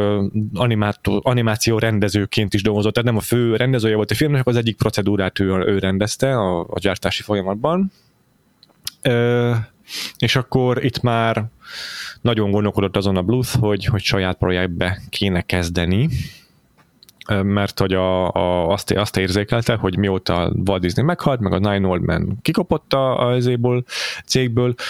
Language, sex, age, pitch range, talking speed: Hungarian, male, 30-49, 95-120 Hz, 145 wpm